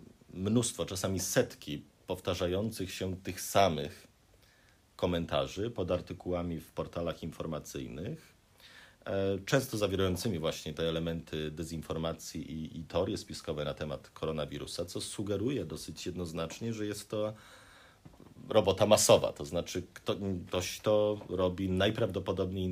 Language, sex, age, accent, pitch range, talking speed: Polish, male, 40-59, native, 80-100 Hz, 110 wpm